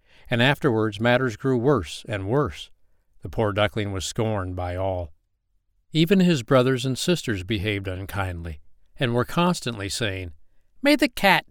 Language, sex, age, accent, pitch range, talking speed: English, male, 60-79, American, 90-130 Hz, 145 wpm